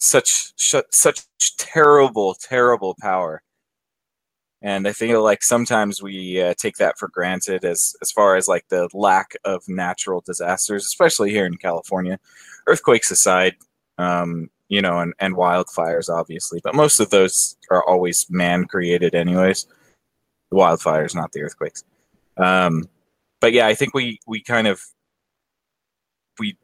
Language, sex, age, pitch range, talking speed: English, male, 20-39, 90-120 Hz, 140 wpm